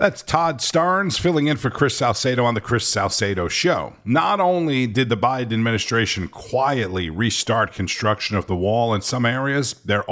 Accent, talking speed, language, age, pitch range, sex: American, 170 wpm, English, 50-69, 100-125 Hz, male